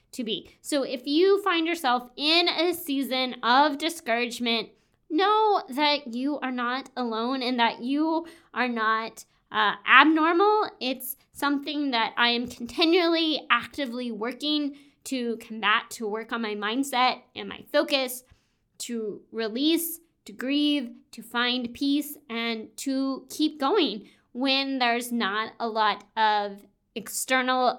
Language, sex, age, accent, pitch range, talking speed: English, female, 20-39, American, 230-285 Hz, 130 wpm